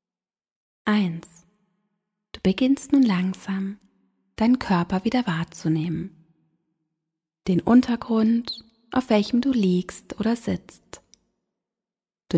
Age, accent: 30-49, German